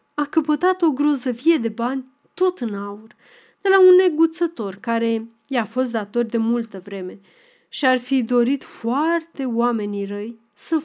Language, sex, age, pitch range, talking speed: Romanian, female, 30-49, 215-285 Hz, 150 wpm